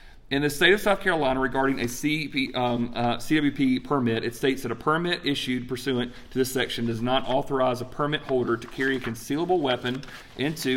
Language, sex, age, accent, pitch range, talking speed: English, male, 40-59, American, 120-140 Hz, 190 wpm